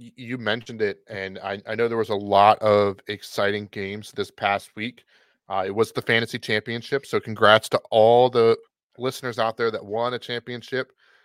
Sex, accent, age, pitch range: male, American, 30-49, 105-125 Hz